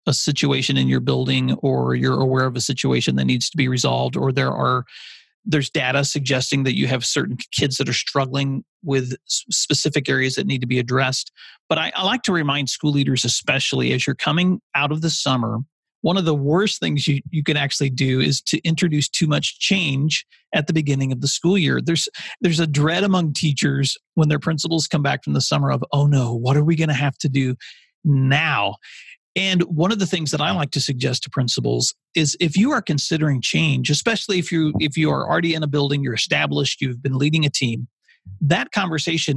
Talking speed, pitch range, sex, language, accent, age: 215 wpm, 130-165 Hz, male, English, American, 40-59